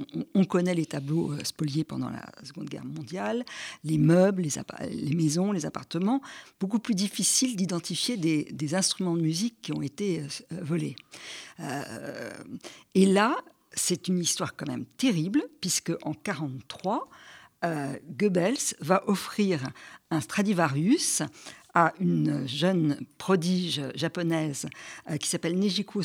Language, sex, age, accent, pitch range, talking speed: French, female, 50-69, French, 160-205 Hz, 125 wpm